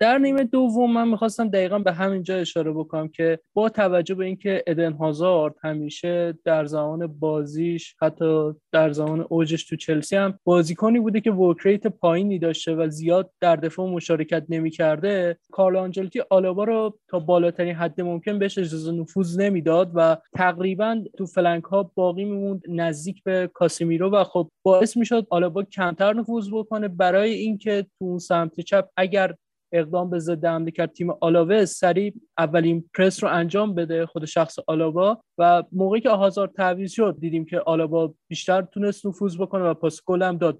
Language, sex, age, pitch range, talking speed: Persian, male, 20-39, 165-195 Hz, 165 wpm